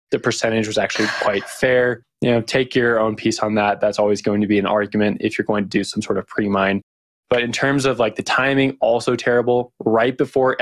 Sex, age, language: male, 20-39, English